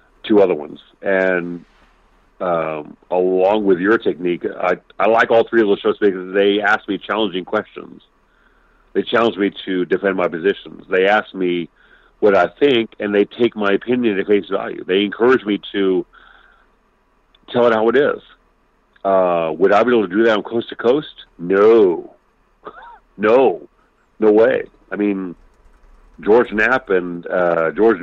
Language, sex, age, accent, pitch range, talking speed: English, male, 40-59, American, 95-120 Hz, 165 wpm